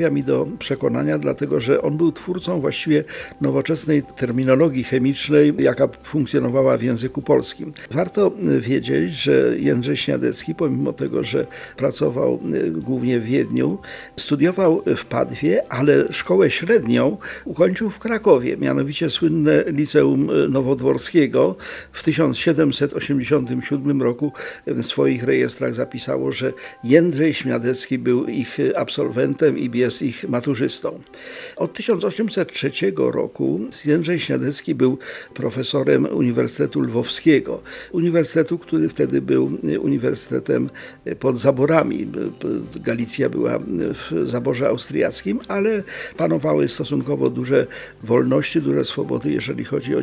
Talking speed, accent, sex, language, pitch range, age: 110 wpm, native, male, Polish, 120-160 Hz, 50-69